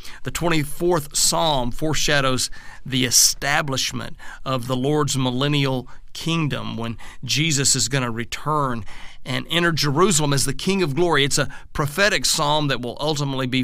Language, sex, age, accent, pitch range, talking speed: English, male, 40-59, American, 130-165 Hz, 145 wpm